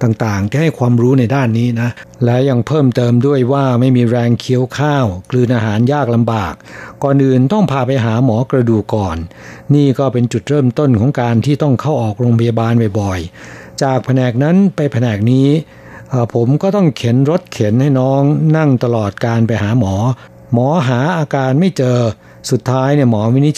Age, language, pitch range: 60-79, Thai, 115-140 Hz